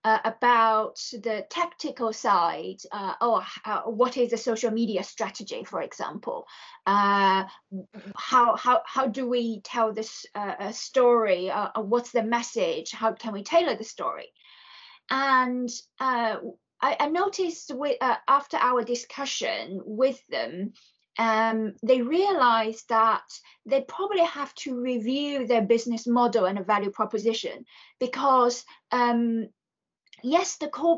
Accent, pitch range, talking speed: British, 220-270 Hz, 130 wpm